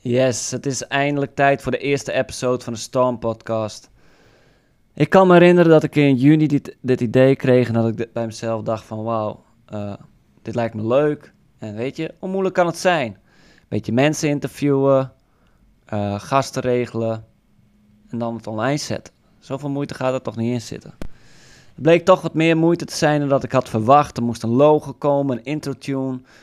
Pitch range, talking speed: 115-140 Hz, 195 wpm